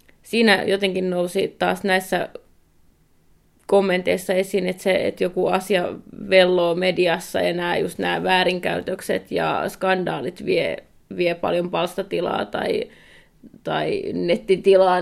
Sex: female